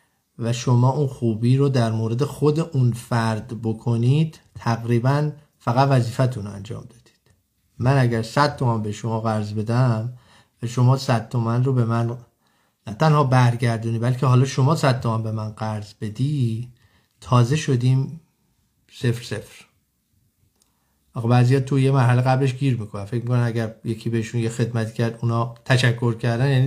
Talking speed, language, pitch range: 150 wpm, Persian, 115-145 Hz